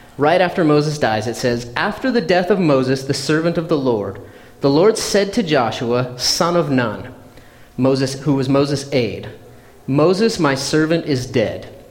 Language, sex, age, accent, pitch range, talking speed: English, male, 30-49, American, 125-165 Hz, 170 wpm